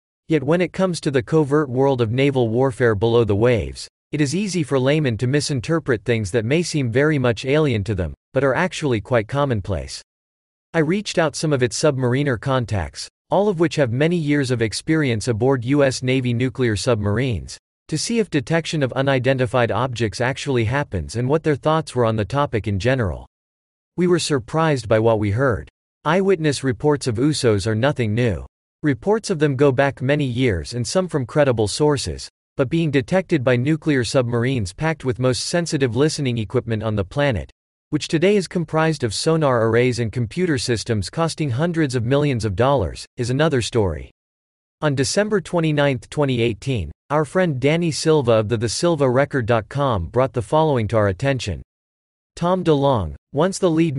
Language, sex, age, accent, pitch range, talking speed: English, male, 40-59, American, 115-150 Hz, 175 wpm